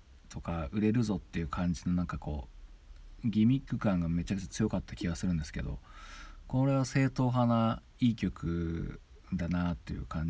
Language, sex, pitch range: Japanese, male, 80-105 Hz